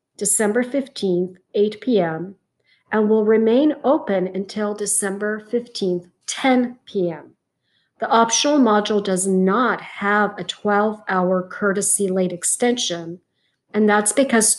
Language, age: English, 50-69